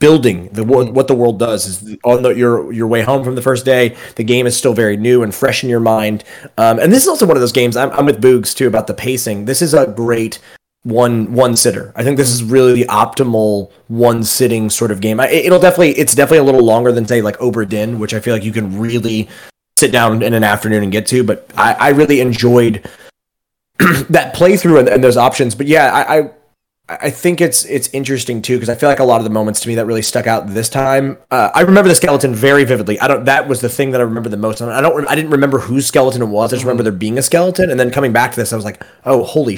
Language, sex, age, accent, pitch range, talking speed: English, male, 20-39, American, 115-140 Hz, 260 wpm